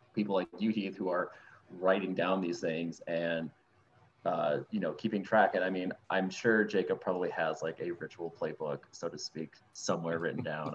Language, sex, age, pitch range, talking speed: English, male, 20-39, 95-110 Hz, 190 wpm